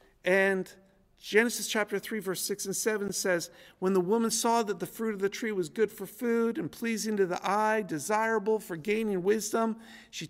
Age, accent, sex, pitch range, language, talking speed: 50-69, American, male, 155-215 Hz, English, 190 wpm